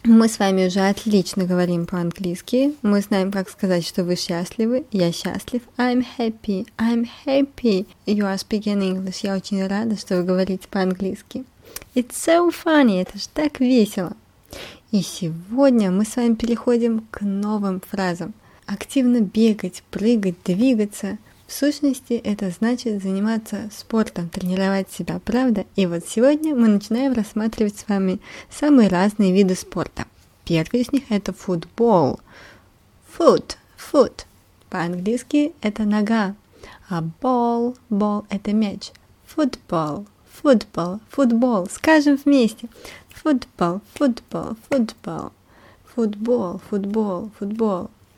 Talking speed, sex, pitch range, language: 120 wpm, female, 190-240 Hz, Russian